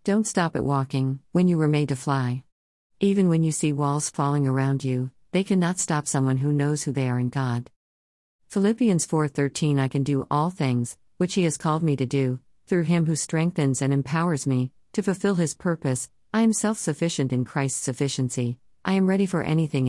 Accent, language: American, English